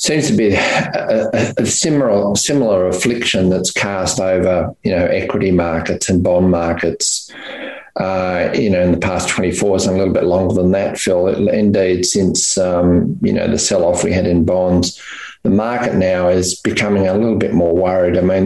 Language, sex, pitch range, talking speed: English, male, 90-105 Hz, 195 wpm